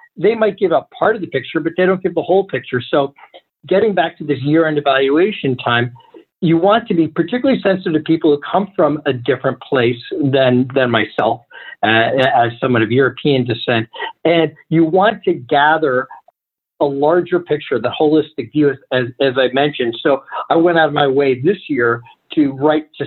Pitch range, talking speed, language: 130-165 Hz, 195 wpm, English